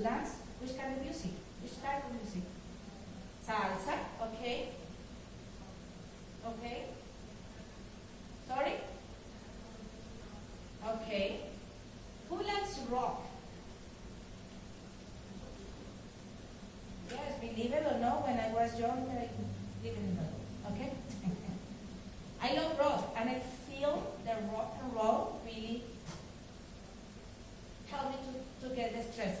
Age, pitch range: 40-59, 205-265 Hz